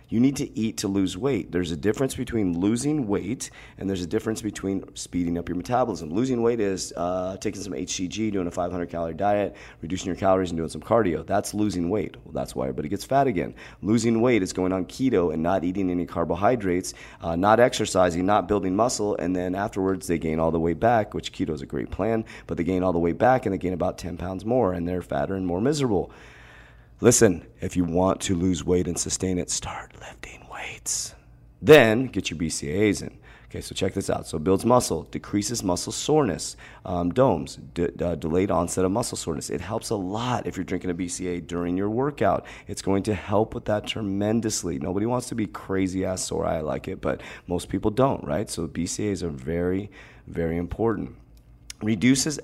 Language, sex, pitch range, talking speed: English, male, 85-110 Hz, 205 wpm